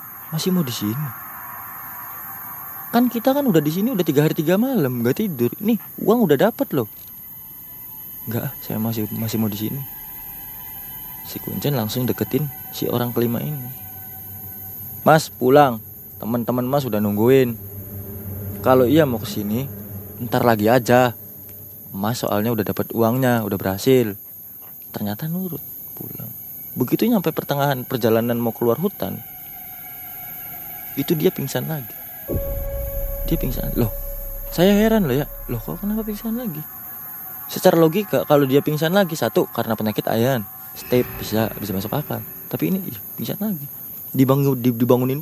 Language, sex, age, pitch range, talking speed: Indonesian, male, 20-39, 100-160 Hz, 140 wpm